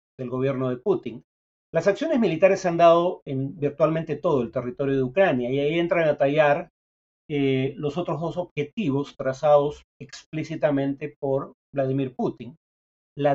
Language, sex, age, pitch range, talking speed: Spanish, male, 40-59, 135-160 Hz, 150 wpm